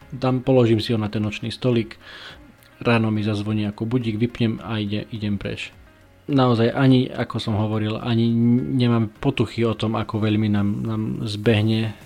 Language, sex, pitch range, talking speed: Slovak, male, 105-120 Hz, 165 wpm